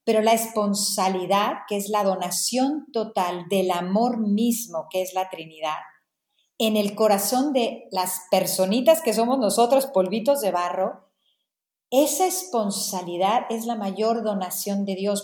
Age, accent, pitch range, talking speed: 40-59, Mexican, 190-240 Hz, 140 wpm